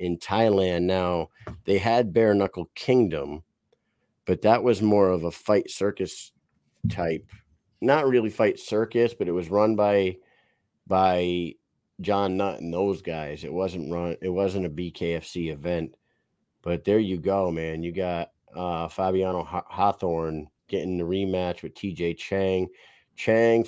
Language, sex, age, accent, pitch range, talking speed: English, male, 40-59, American, 85-100 Hz, 145 wpm